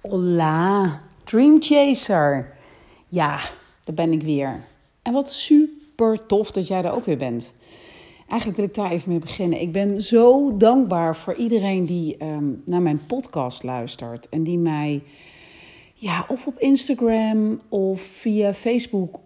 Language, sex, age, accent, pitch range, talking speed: Dutch, female, 40-59, Dutch, 155-230 Hz, 145 wpm